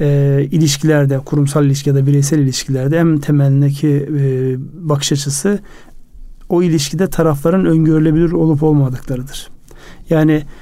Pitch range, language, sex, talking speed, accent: 140-165 Hz, Turkish, male, 100 wpm, native